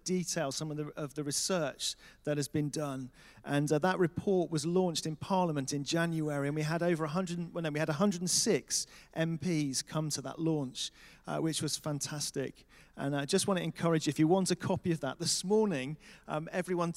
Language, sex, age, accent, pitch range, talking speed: English, male, 40-59, British, 150-175 Hz, 195 wpm